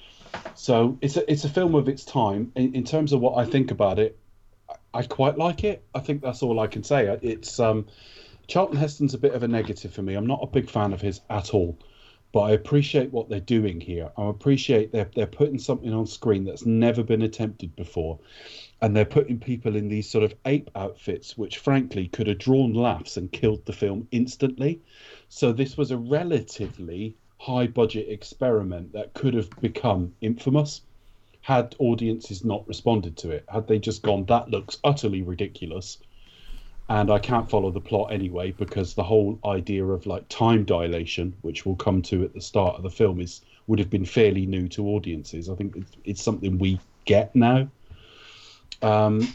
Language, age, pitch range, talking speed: English, 30-49, 100-125 Hz, 195 wpm